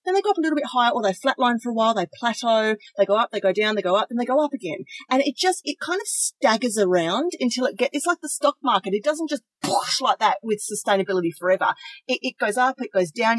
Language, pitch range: English, 195-290 Hz